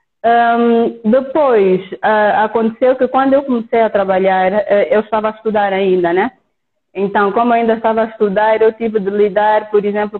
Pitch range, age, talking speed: 200-235 Hz, 20-39, 175 wpm